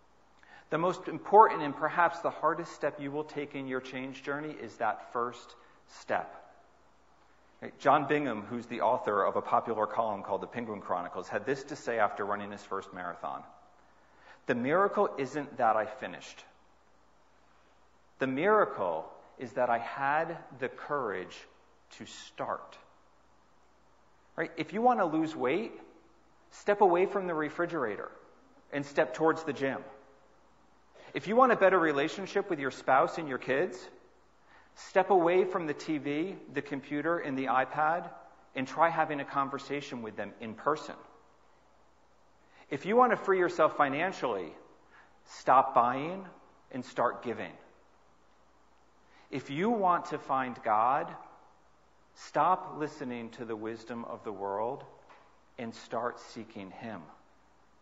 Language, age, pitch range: English, 40-59, 125-170 Hz